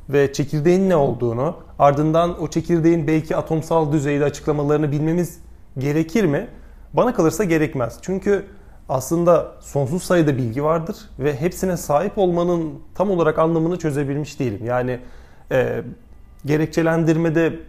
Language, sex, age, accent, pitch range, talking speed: Turkish, male, 30-49, native, 140-175 Hz, 120 wpm